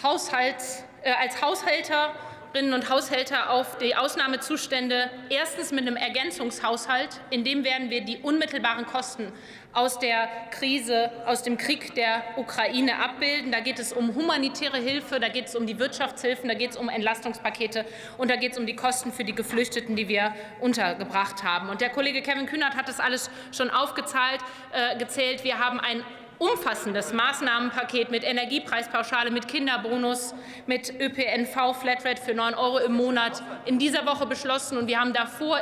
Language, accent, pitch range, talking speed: German, German, 235-270 Hz, 160 wpm